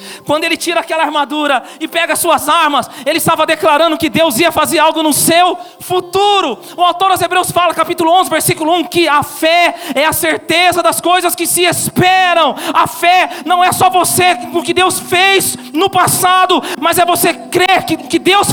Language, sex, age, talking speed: Portuguese, male, 40-59, 190 wpm